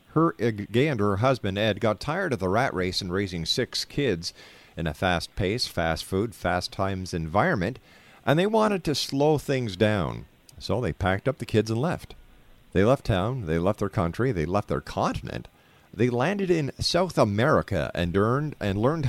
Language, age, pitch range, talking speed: English, 50-69, 95-130 Hz, 180 wpm